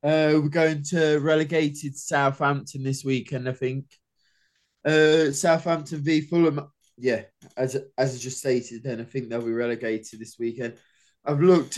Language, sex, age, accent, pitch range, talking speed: English, male, 20-39, British, 130-165 Hz, 155 wpm